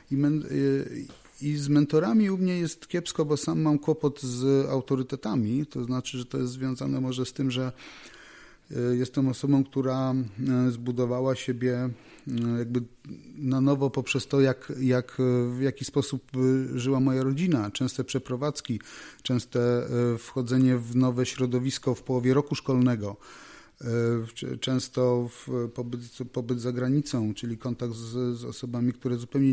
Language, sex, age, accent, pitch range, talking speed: Polish, male, 30-49, native, 120-135 Hz, 130 wpm